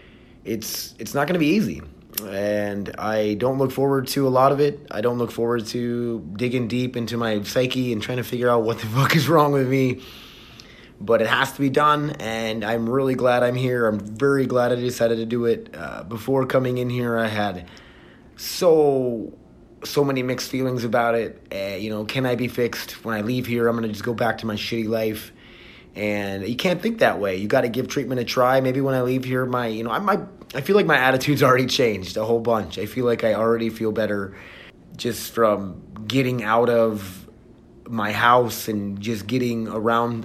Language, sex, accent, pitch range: English, male, American, 110-130 Hz